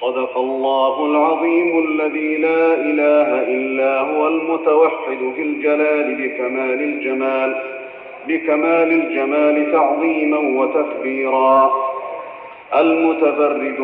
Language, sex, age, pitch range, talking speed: Arabic, male, 40-59, 135-160 Hz, 80 wpm